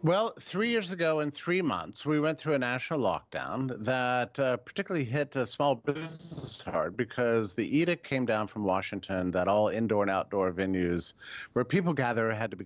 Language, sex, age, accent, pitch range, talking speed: English, male, 50-69, American, 100-145 Hz, 190 wpm